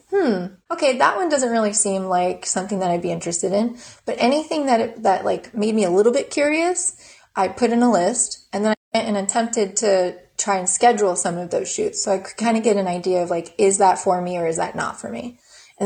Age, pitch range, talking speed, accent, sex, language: 20-39, 180-220 Hz, 245 wpm, American, female, English